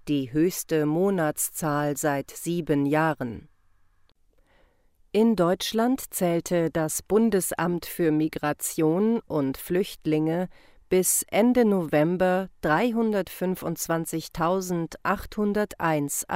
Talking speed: 70 wpm